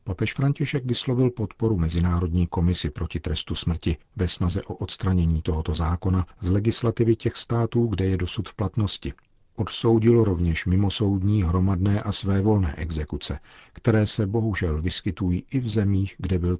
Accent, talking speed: native, 145 wpm